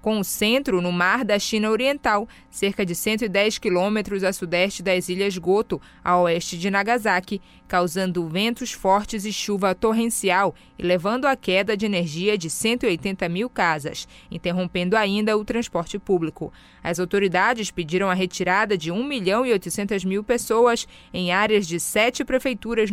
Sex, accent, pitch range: female, Brazilian, 185-230 Hz